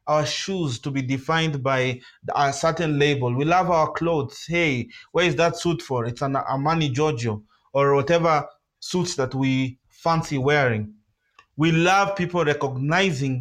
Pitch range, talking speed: 135-170 Hz, 150 wpm